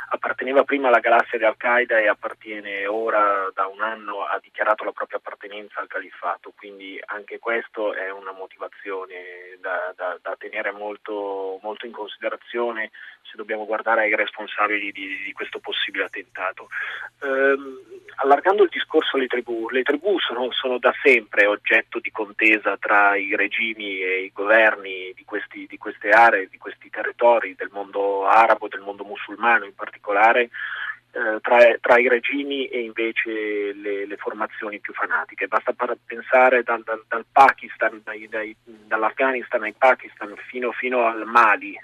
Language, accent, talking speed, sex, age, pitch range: Italian, native, 150 wpm, male, 30-49, 100-130 Hz